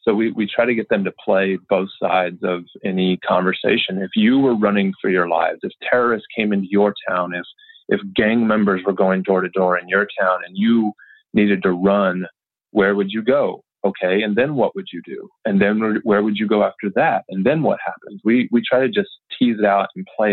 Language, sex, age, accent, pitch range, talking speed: English, male, 30-49, American, 100-125 Hz, 225 wpm